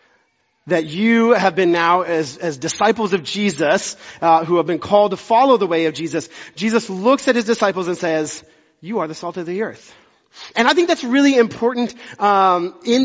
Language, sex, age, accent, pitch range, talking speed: English, male, 30-49, American, 185-240 Hz, 200 wpm